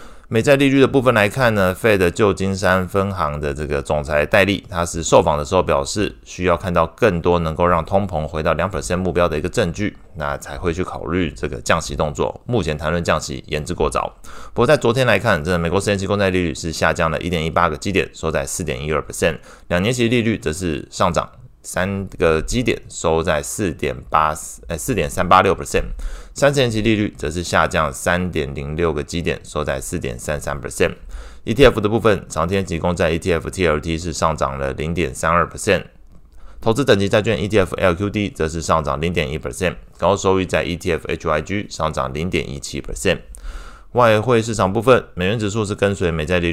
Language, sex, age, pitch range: Chinese, male, 20-39, 75-95 Hz